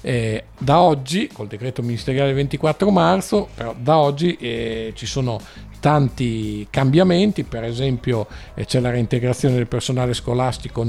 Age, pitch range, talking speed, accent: 50-69, 115-140 Hz, 140 wpm, native